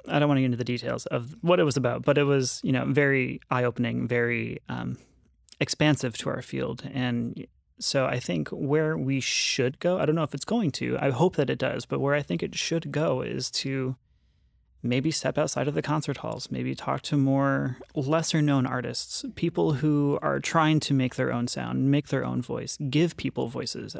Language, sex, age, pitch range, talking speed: English, male, 30-49, 120-145 Hz, 215 wpm